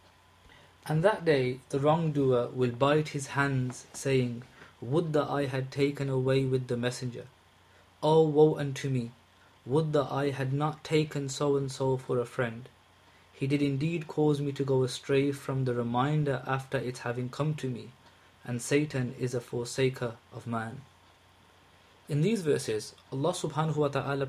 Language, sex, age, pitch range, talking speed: English, male, 20-39, 120-145 Hz, 165 wpm